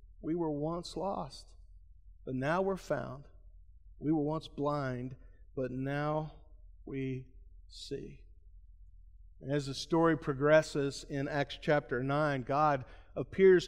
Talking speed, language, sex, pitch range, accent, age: 115 wpm, English, male, 120-180 Hz, American, 40-59